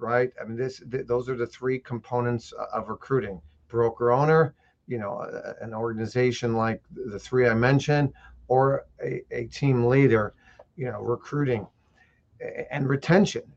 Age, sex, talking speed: 40-59, male, 155 wpm